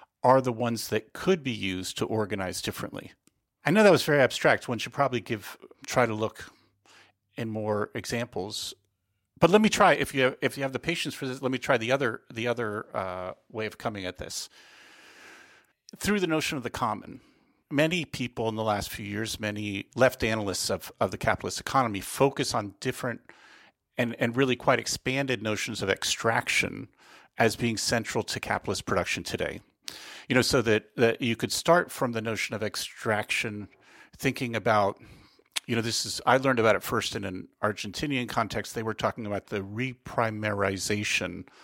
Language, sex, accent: English, male, American